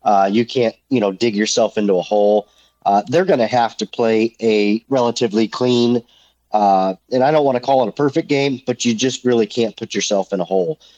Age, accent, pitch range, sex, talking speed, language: 40-59, American, 105-135 Hz, male, 225 wpm, English